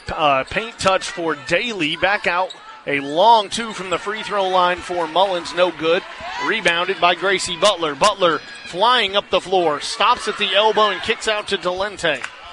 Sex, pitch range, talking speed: male, 175-215 Hz, 175 wpm